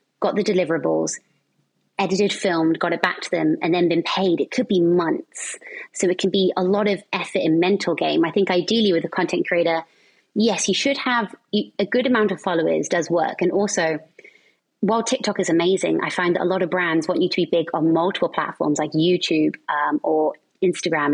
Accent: British